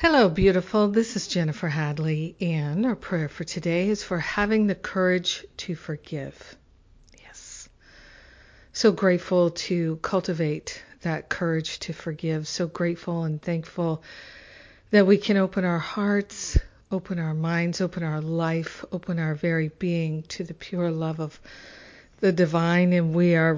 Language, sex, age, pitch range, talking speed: English, female, 50-69, 165-195 Hz, 145 wpm